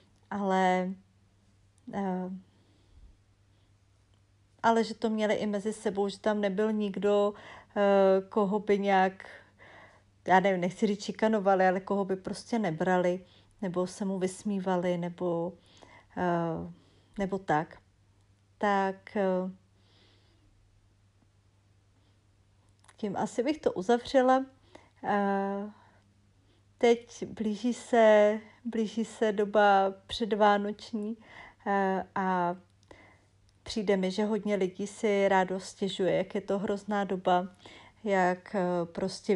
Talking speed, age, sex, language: 95 wpm, 40-59, female, Czech